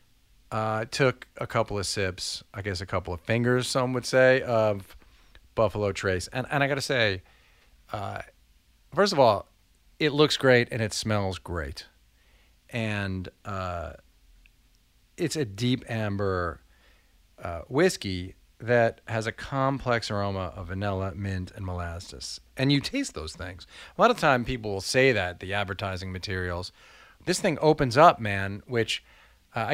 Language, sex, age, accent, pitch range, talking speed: English, male, 40-59, American, 90-125 Hz, 155 wpm